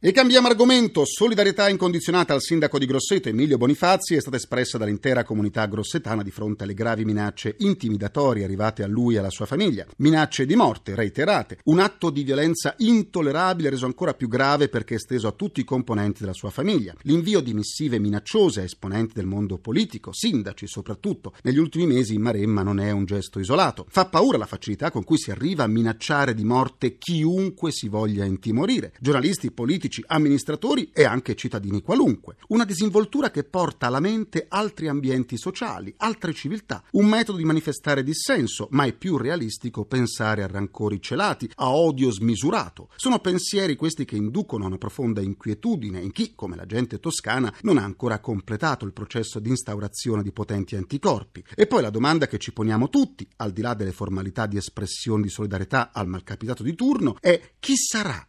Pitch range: 105-165 Hz